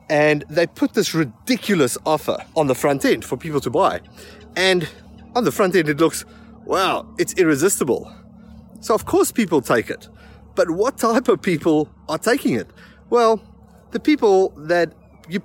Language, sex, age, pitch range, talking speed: English, male, 30-49, 140-200 Hz, 165 wpm